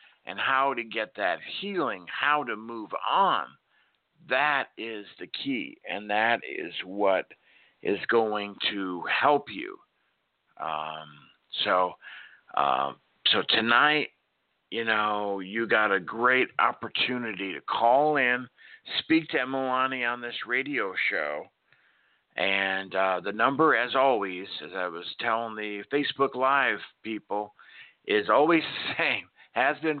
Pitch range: 110-145 Hz